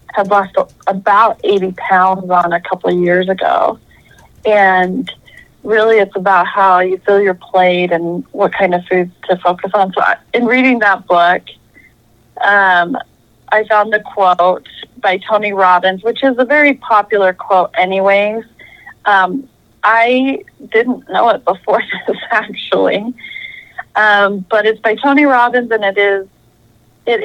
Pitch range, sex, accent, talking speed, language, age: 185-220 Hz, female, American, 150 wpm, English, 30-49